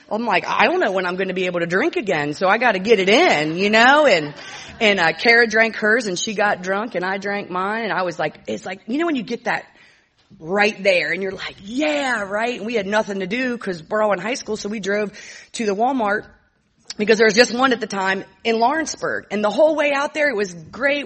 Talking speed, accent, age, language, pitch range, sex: 265 wpm, American, 30-49, English, 195-235 Hz, female